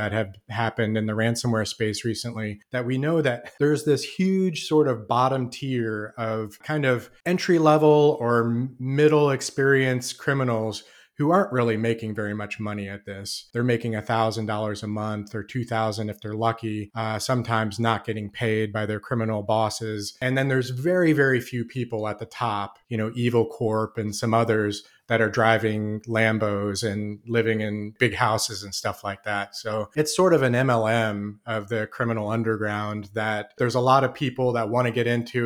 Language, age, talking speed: English, 30-49, 180 wpm